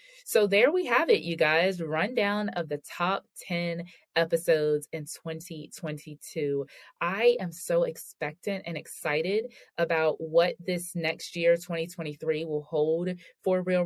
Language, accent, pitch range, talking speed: English, American, 165-210 Hz, 135 wpm